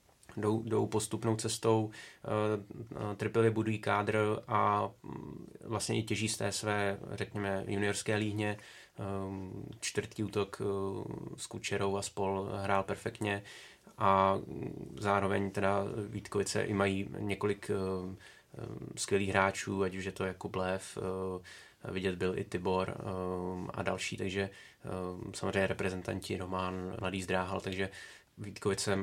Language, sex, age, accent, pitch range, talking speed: Czech, male, 20-39, native, 95-105 Hz, 110 wpm